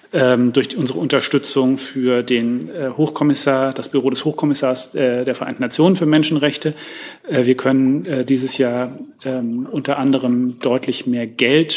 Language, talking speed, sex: German, 120 wpm, male